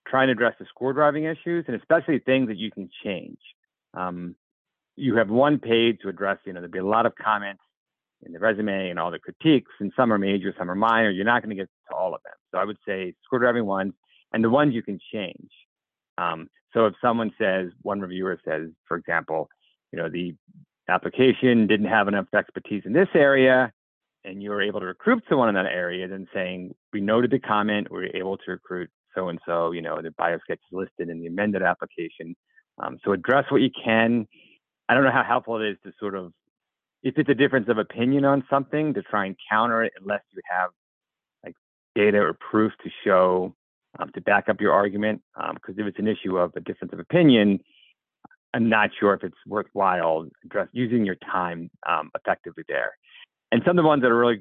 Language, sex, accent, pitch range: English, male, American, 95-125 Hz